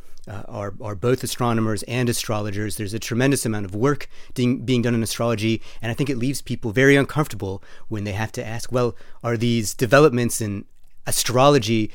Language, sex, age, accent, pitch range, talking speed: English, male, 30-49, American, 105-130 Hz, 185 wpm